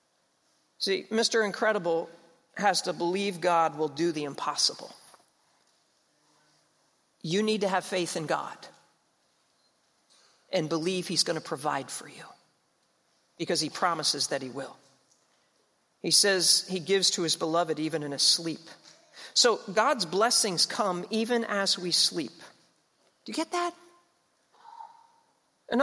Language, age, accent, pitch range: English, 50-69, American, 180-275 Hz